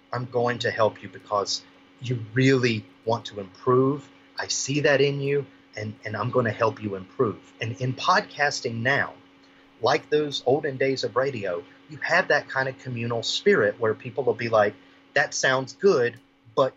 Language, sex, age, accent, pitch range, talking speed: English, male, 30-49, American, 120-165 Hz, 175 wpm